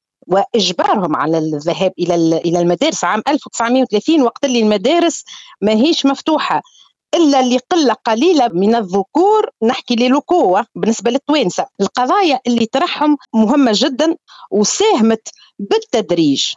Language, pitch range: Arabic, 200-280 Hz